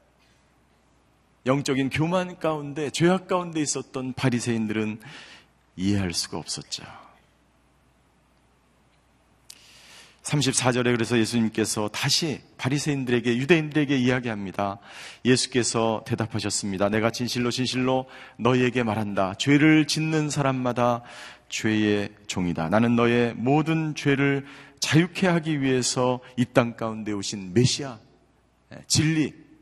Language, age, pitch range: Korean, 40-59, 110-150 Hz